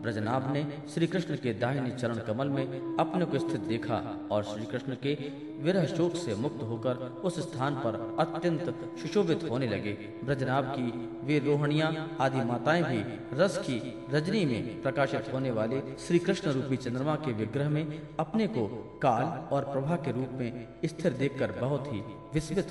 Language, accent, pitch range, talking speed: Hindi, native, 120-165 Hz, 165 wpm